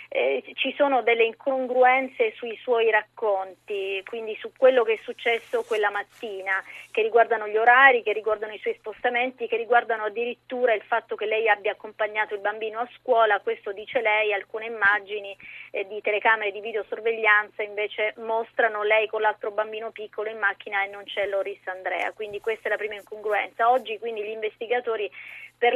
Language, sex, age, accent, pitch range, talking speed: Italian, female, 30-49, native, 210-235 Hz, 170 wpm